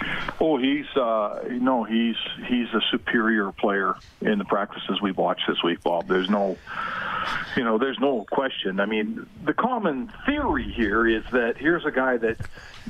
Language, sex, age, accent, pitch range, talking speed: English, male, 50-69, American, 110-185 Hz, 170 wpm